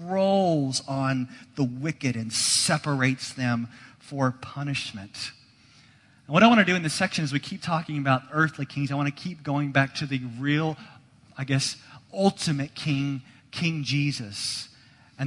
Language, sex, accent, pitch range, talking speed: English, male, American, 125-150 Hz, 160 wpm